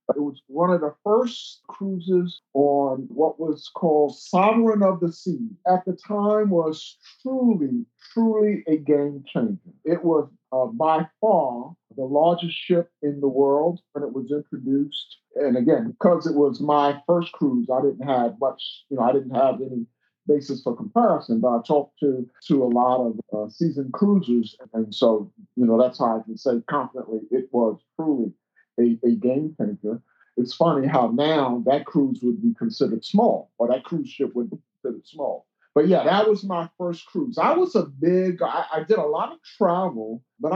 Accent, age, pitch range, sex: American, 50-69, 130-185 Hz, male